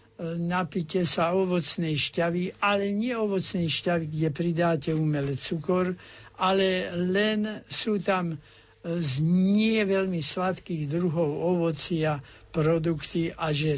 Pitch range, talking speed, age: 145-180 Hz, 110 wpm, 60-79